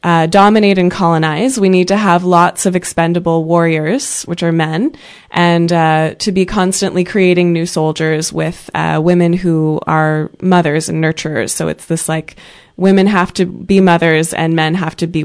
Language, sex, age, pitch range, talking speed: English, female, 20-39, 160-185 Hz, 175 wpm